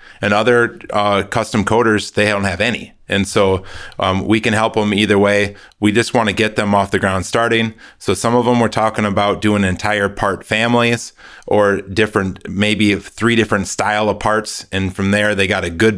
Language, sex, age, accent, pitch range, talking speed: English, male, 30-49, American, 95-110 Hz, 205 wpm